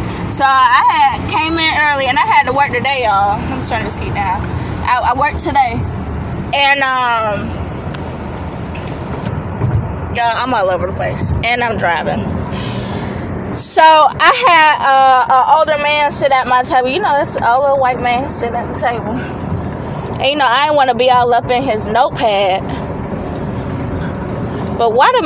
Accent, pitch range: American, 235-300 Hz